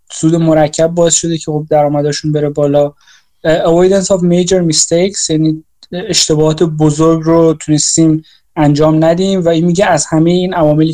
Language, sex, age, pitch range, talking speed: Persian, male, 20-39, 150-165 Hz, 145 wpm